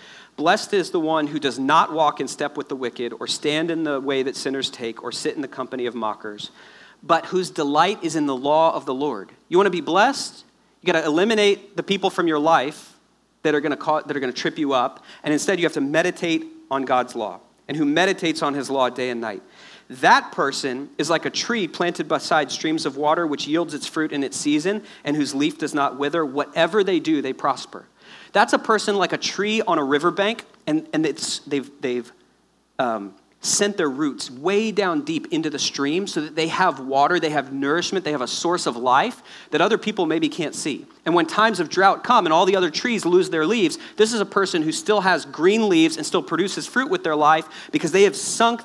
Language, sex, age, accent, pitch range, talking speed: English, male, 40-59, American, 145-200 Hz, 230 wpm